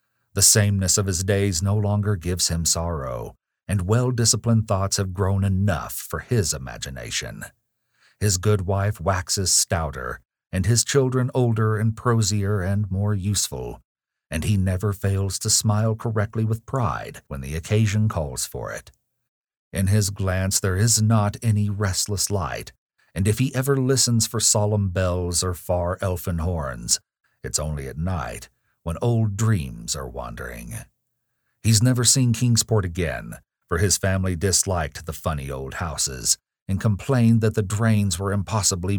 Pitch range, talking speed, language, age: 90-110 Hz, 150 wpm, English, 50-69